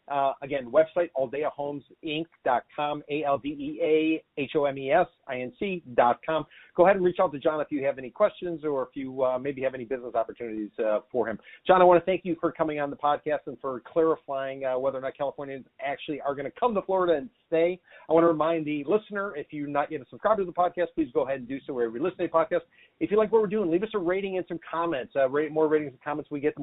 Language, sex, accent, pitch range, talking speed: English, male, American, 135-170 Hz, 240 wpm